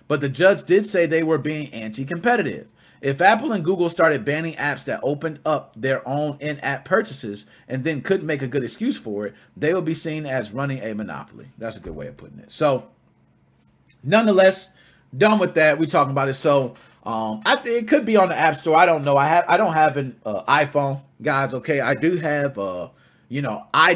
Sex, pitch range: male, 140-190 Hz